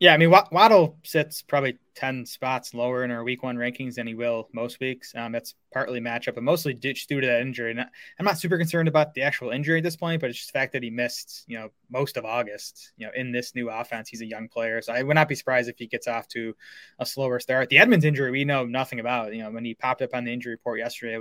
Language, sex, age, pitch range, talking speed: English, male, 20-39, 120-135 Hz, 275 wpm